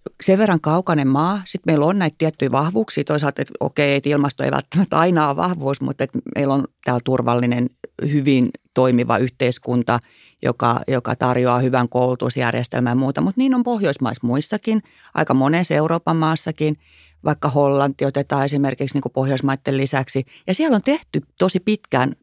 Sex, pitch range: female, 130-180 Hz